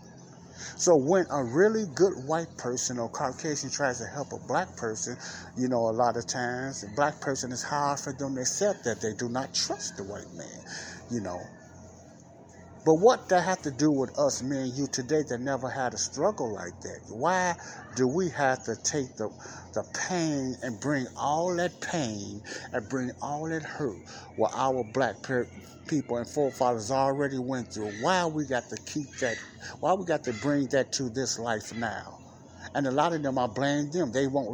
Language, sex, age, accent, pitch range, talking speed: English, male, 60-79, American, 120-150 Hz, 195 wpm